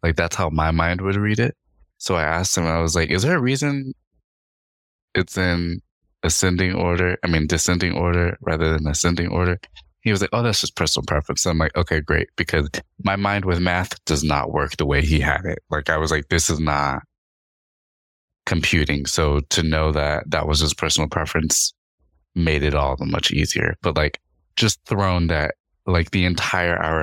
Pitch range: 75-90 Hz